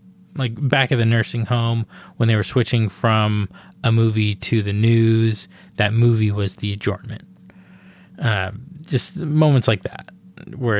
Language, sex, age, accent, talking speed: English, male, 20-39, American, 150 wpm